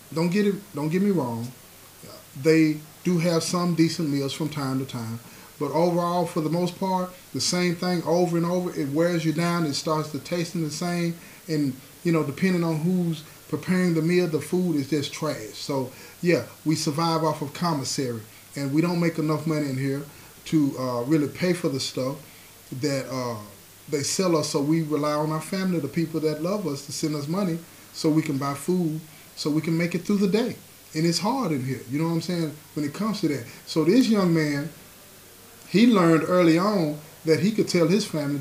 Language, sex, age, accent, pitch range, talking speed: English, male, 30-49, American, 145-175 Hz, 215 wpm